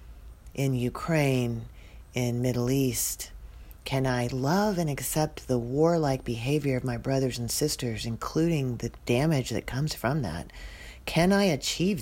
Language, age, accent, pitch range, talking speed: English, 40-59, American, 110-135 Hz, 140 wpm